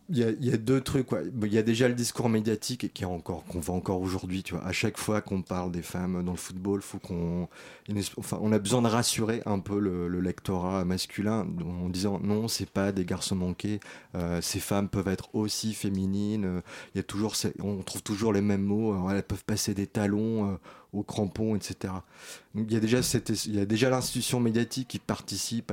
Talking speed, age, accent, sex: 230 wpm, 30-49, French, male